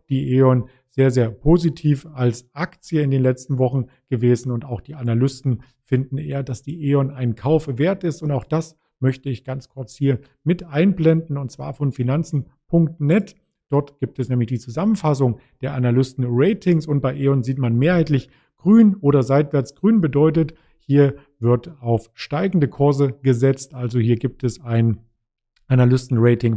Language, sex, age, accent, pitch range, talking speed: German, male, 50-69, German, 125-145 Hz, 155 wpm